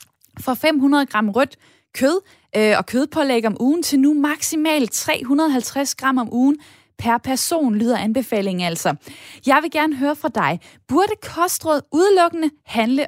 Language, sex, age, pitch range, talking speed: Danish, female, 10-29, 215-290 Hz, 145 wpm